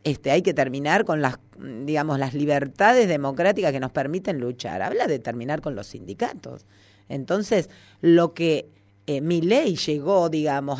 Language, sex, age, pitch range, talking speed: Spanish, female, 40-59, 115-160 Hz, 155 wpm